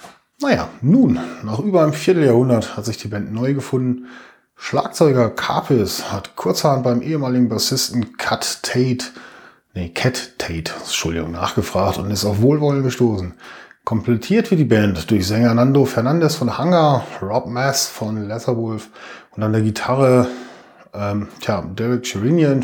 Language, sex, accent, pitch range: German, male, German, 105-140 Hz